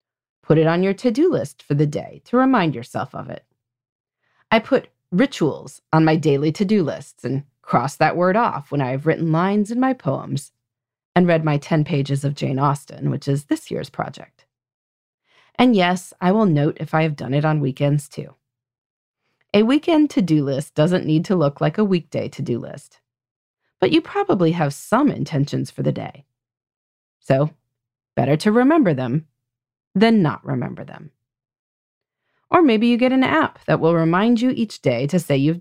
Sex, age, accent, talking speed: female, 30-49, American, 180 wpm